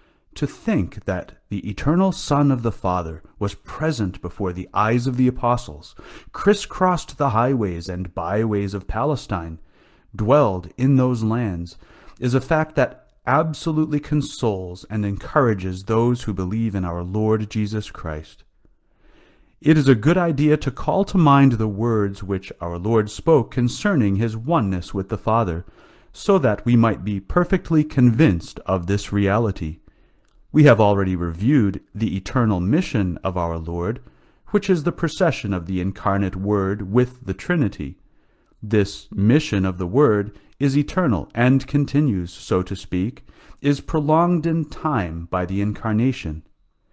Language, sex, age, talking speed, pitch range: English, male, 30-49, 145 wpm, 95-140 Hz